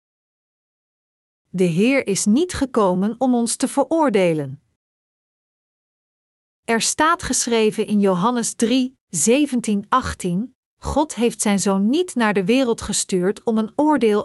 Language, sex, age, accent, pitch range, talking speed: Dutch, female, 40-59, Dutch, 200-255 Hz, 120 wpm